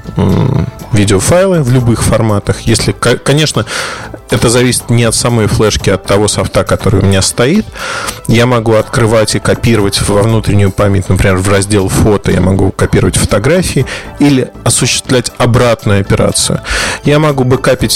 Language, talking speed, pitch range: Russian, 145 wpm, 105-130 Hz